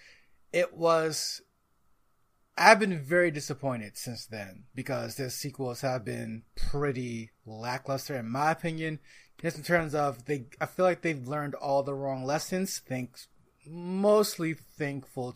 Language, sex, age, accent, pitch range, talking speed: English, male, 30-49, American, 125-160 Hz, 135 wpm